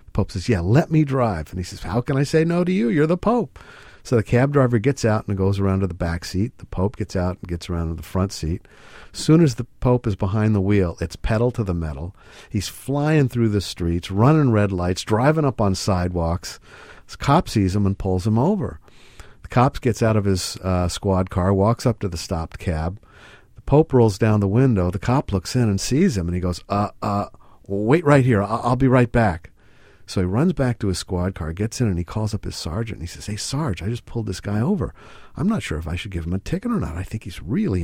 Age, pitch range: 50-69, 95-135 Hz